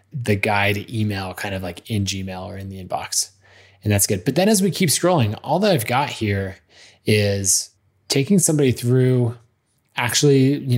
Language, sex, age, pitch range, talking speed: English, male, 20-39, 105-135 Hz, 180 wpm